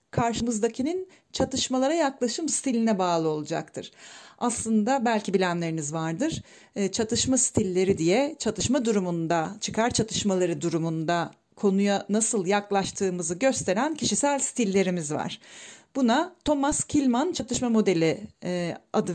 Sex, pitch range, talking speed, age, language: female, 200-255 Hz, 95 wpm, 40-59, Turkish